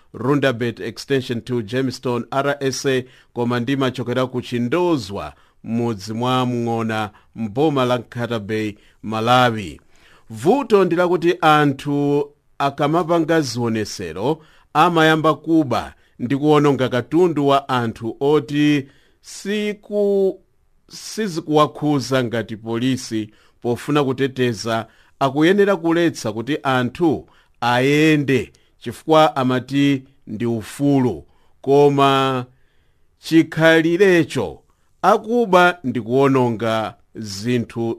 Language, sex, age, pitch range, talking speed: English, male, 50-69, 115-150 Hz, 75 wpm